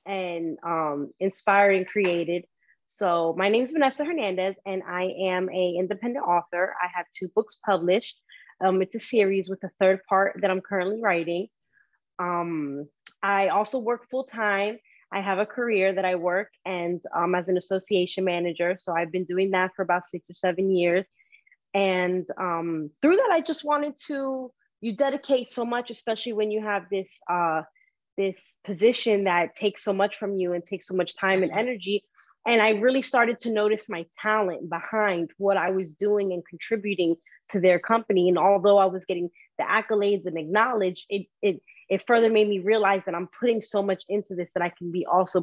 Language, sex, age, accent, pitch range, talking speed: English, female, 20-39, American, 180-215 Hz, 190 wpm